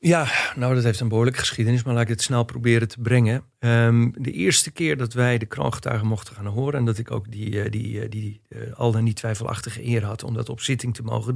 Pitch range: 105-120 Hz